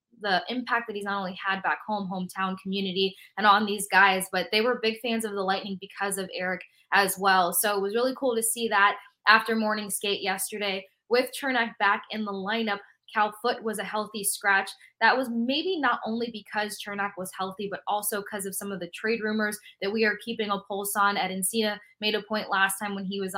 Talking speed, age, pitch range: 225 wpm, 20-39, 190-220 Hz